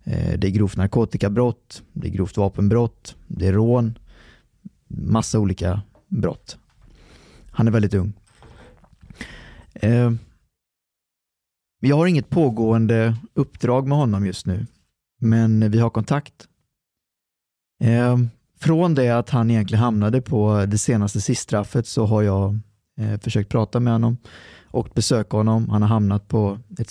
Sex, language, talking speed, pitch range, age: male, Swedish, 125 wpm, 105-130 Hz, 20-39